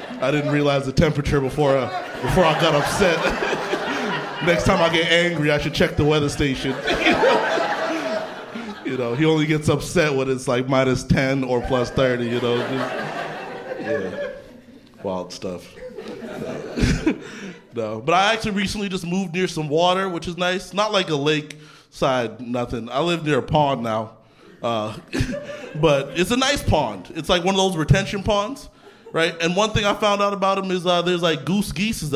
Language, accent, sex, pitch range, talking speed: English, American, male, 135-185 Hz, 175 wpm